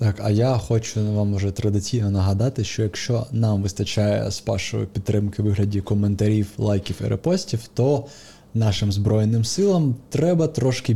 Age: 20-39